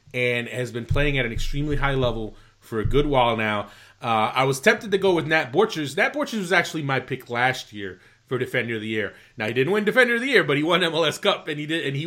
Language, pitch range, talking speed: English, 125-155 Hz, 270 wpm